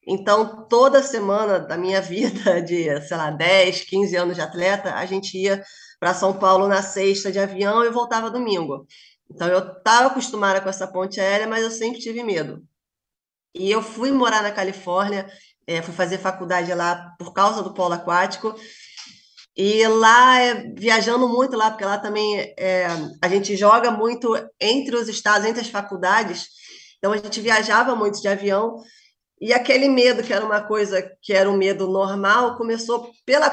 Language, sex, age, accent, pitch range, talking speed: Portuguese, female, 20-39, Brazilian, 190-235 Hz, 175 wpm